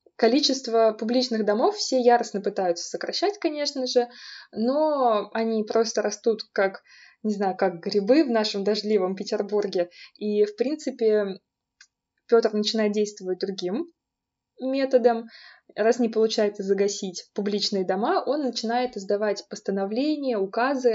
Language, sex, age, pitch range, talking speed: Russian, female, 20-39, 200-250 Hz, 115 wpm